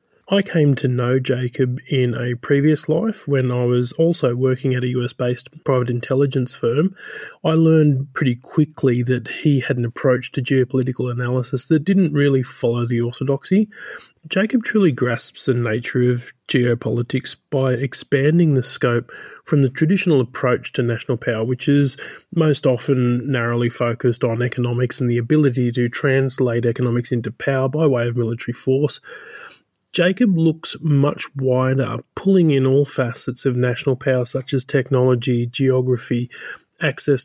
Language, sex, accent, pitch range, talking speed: English, male, Australian, 125-145 Hz, 150 wpm